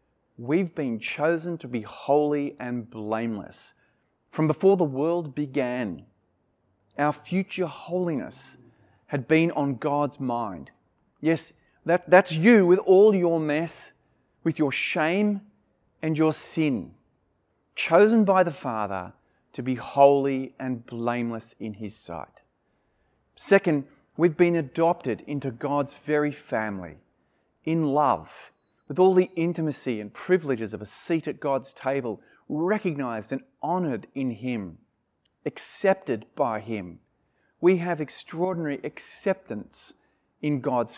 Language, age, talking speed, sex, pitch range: English, 30-49, 120 wpm, male, 130-175 Hz